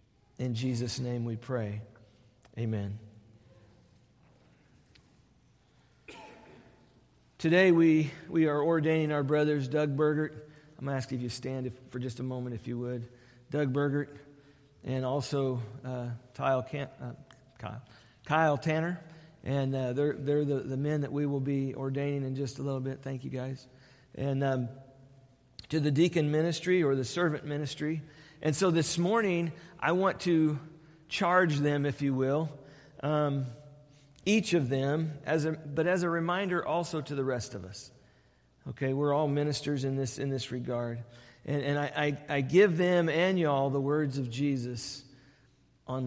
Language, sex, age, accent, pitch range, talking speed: English, male, 40-59, American, 125-155 Hz, 155 wpm